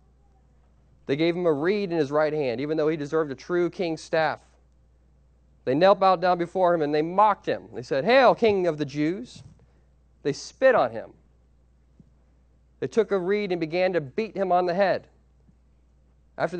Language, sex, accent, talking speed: English, male, American, 185 wpm